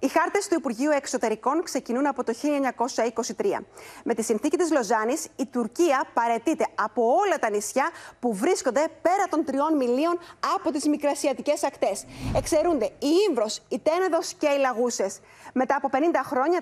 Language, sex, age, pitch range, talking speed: Greek, female, 30-49, 255-335 Hz, 155 wpm